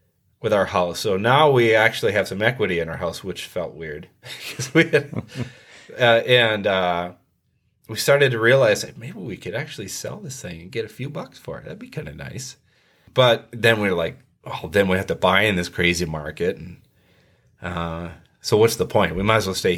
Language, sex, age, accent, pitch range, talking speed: English, male, 30-49, American, 90-120 Hz, 205 wpm